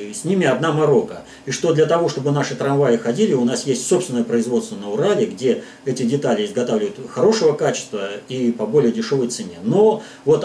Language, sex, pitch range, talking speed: Russian, male, 140-225 Hz, 185 wpm